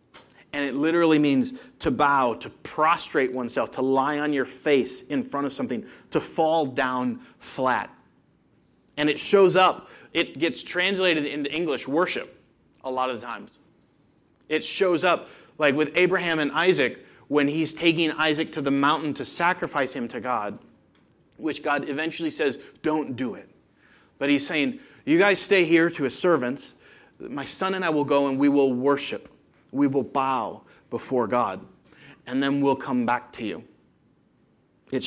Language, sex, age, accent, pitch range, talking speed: English, male, 30-49, American, 130-165 Hz, 165 wpm